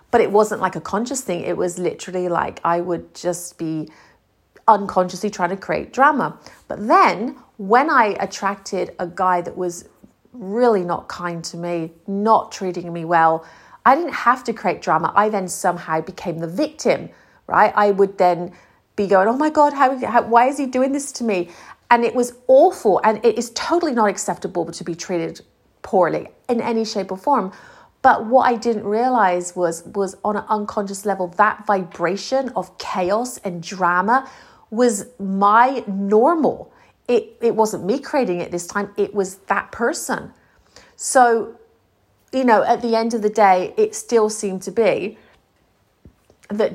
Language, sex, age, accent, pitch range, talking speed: English, female, 40-59, British, 180-235 Hz, 170 wpm